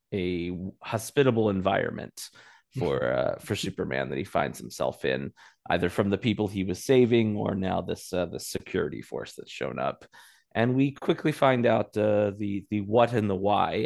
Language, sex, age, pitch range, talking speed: English, male, 30-49, 95-115 Hz, 180 wpm